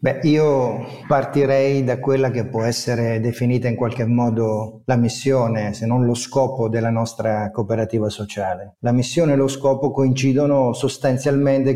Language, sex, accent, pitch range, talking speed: Italian, male, native, 115-135 Hz, 150 wpm